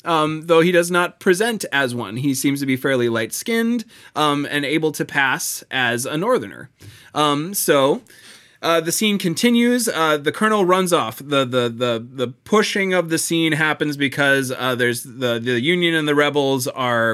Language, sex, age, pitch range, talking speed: English, male, 20-39, 125-155 Hz, 180 wpm